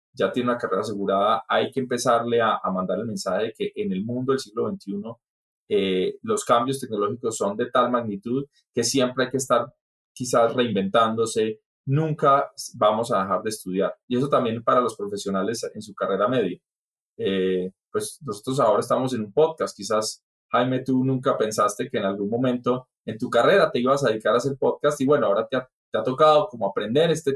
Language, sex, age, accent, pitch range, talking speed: English, male, 20-39, Colombian, 115-150 Hz, 195 wpm